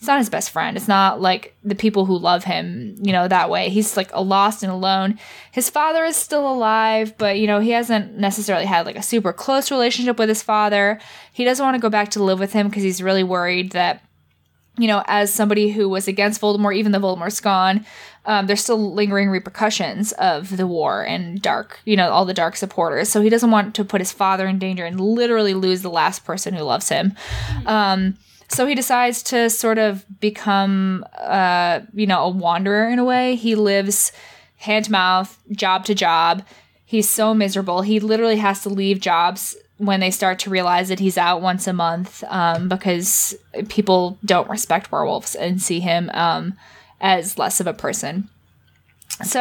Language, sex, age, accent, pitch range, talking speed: English, female, 10-29, American, 185-215 Hz, 200 wpm